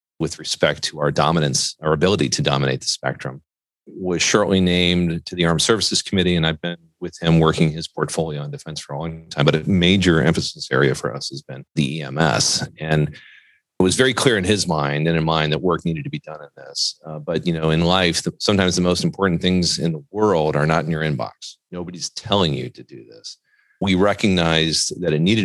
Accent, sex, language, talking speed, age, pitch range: American, male, English, 220 wpm, 40-59, 80-100 Hz